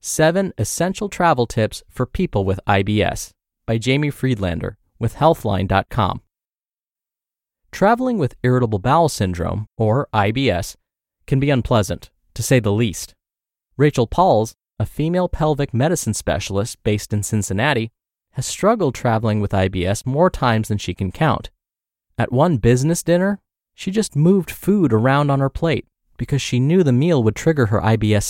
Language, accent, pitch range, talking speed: English, American, 105-150 Hz, 145 wpm